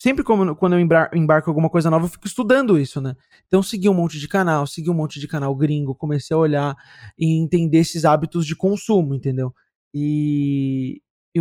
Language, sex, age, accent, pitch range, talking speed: Portuguese, male, 20-39, Brazilian, 155-205 Hz, 190 wpm